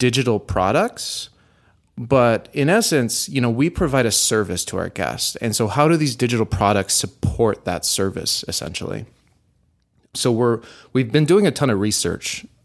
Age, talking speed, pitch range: 30-49, 160 wpm, 100-125 Hz